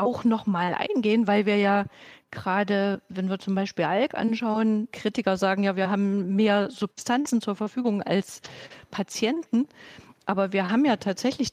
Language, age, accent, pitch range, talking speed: German, 50-69, German, 195-230 Hz, 150 wpm